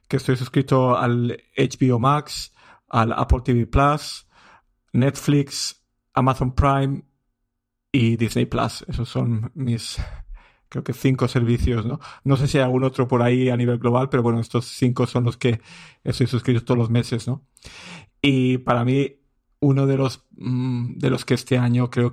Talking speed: 165 wpm